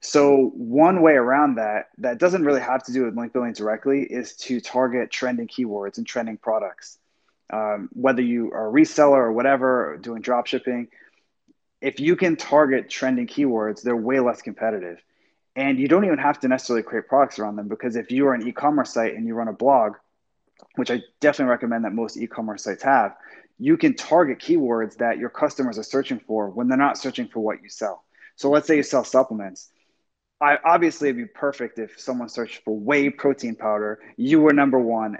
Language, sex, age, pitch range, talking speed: English, male, 20-39, 115-140 Hz, 200 wpm